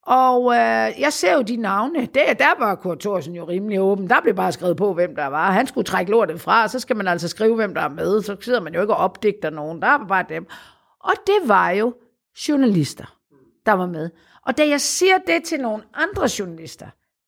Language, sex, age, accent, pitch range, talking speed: Danish, female, 50-69, native, 190-275 Hz, 230 wpm